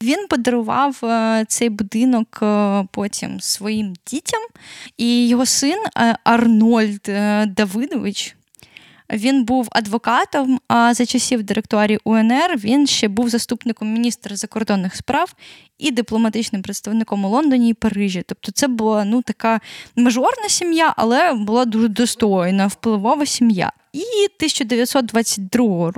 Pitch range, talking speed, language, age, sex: 220-265 Hz, 115 wpm, Ukrainian, 10-29, female